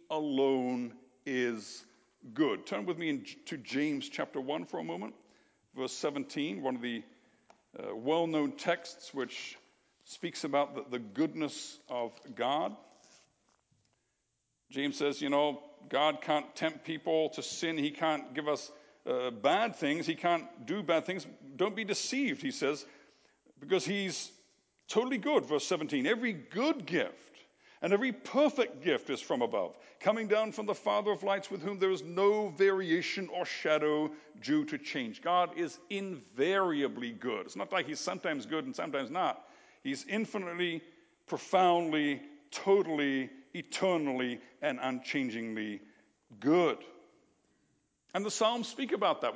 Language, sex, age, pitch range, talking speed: English, male, 60-79, 145-200 Hz, 140 wpm